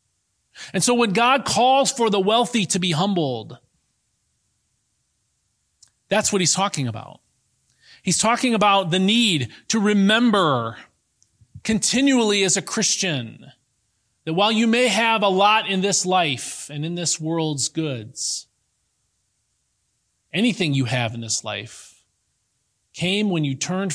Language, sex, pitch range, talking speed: English, male, 120-190 Hz, 130 wpm